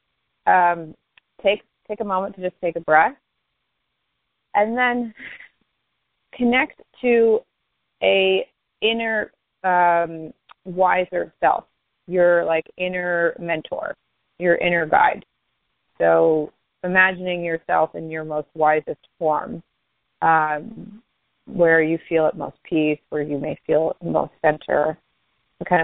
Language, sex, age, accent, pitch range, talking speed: English, female, 30-49, American, 160-185 Hz, 115 wpm